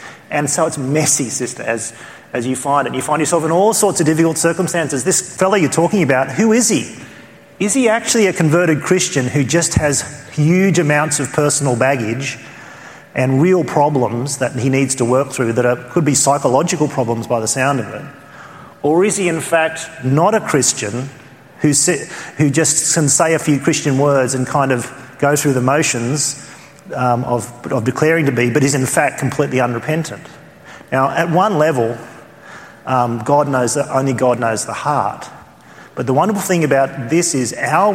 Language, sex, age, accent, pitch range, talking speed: English, male, 40-59, Australian, 130-165 Hz, 185 wpm